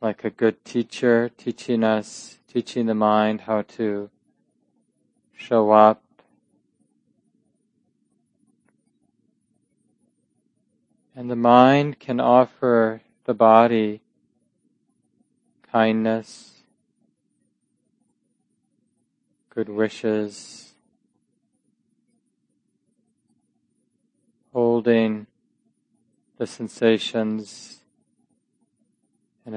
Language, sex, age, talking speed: English, male, 20-39, 55 wpm